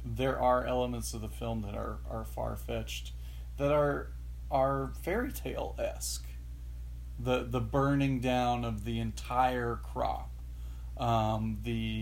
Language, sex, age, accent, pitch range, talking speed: English, male, 40-59, American, 110-125 Hz, 135 wpm